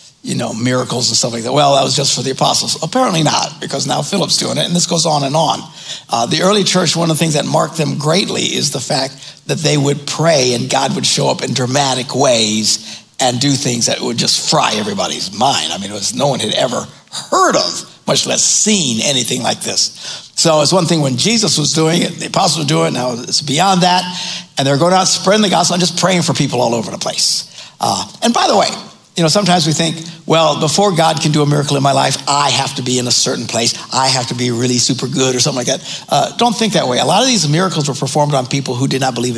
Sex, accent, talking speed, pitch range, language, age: male, American, 260 wpm, 135-180 Hz, English, 60-79